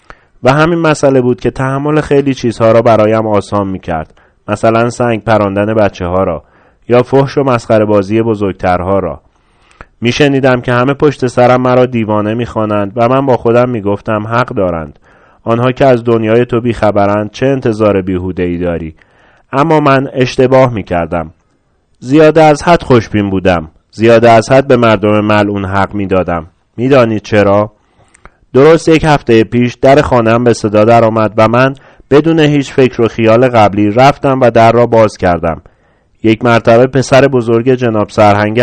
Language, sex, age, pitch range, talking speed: Persian, male, 30-49, 105-130 Hz, 160 wpm